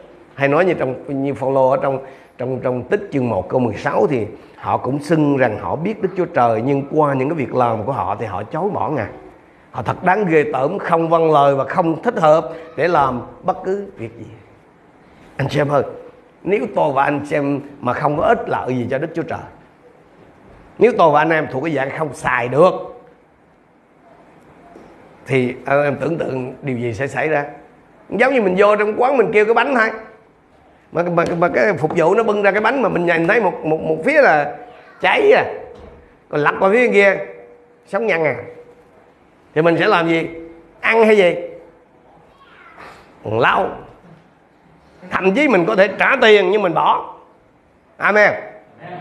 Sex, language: male, Vietnamese